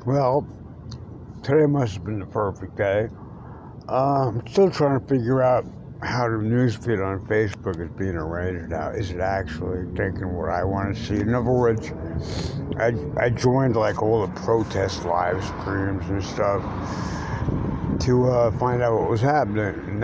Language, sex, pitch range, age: English, male, 100-125 Hz, 60-79